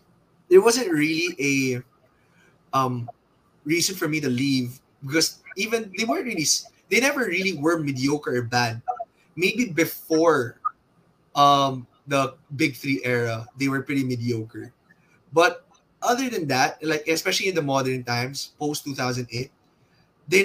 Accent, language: Filipino, English